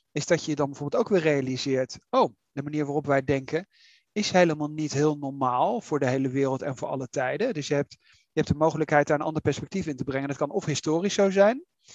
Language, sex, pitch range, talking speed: Dutch, male, 145-175 Hz, 240 wpm